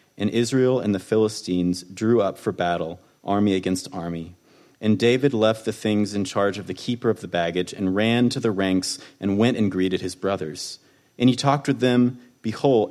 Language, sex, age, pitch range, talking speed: English, male, 30-49, 95-120 Hz, 195 wpm